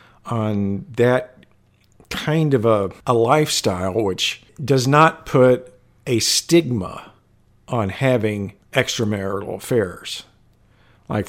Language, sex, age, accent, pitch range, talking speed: English, male, 50-69, American, 100-125 Hz, 95 wpm